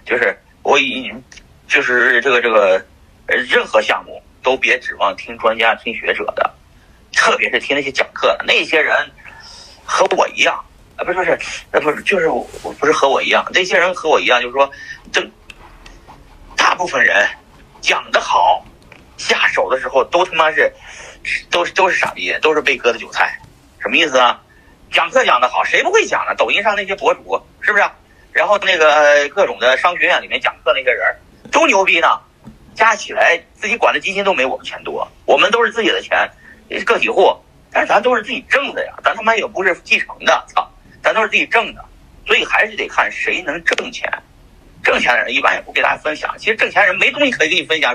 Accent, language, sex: native, Chinese, male